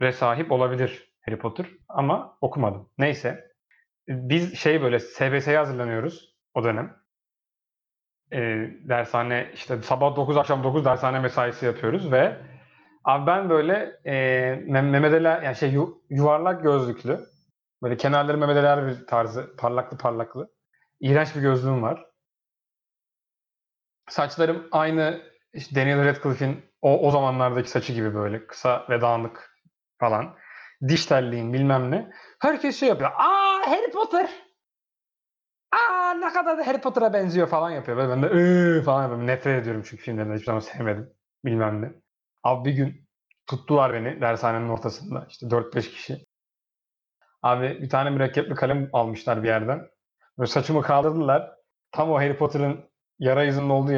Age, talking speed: 30-49, 130 wpm